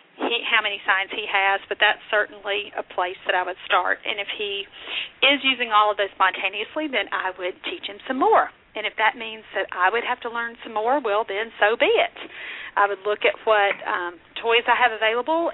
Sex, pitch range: female, 205-265 Hz